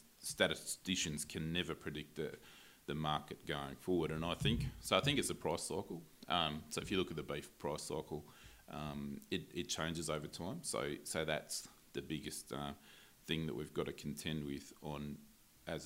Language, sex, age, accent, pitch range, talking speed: English, male, 30-49, Australian, 75-80 Hz, 190 wpm